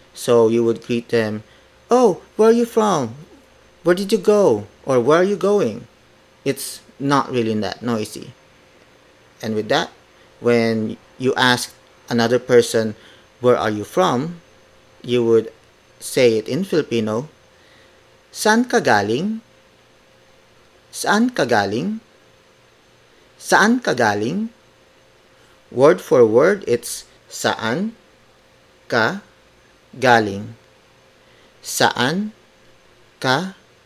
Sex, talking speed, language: male, 100 wpm, English